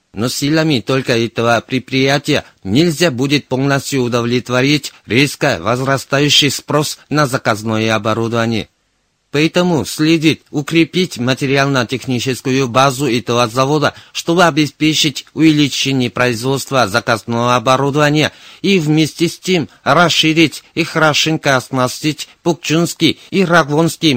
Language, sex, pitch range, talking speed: Russian, male, 125-155 Hz, 95 wpm